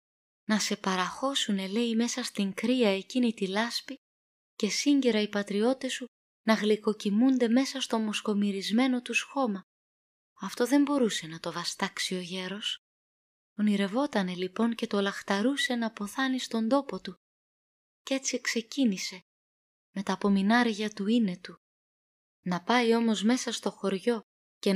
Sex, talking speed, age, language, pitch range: female, 135 wpm, 20-39, Greek, 185-235 Hz